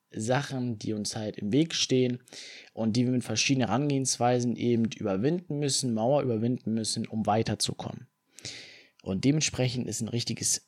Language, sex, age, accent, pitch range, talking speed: German, male, 20-39, German, 110-130 Hz, 145 wpm